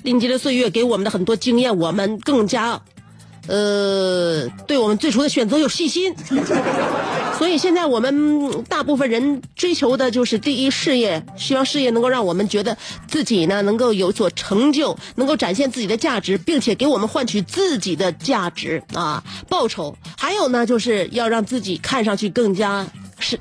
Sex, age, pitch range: female, 30-49, 210-290 Hz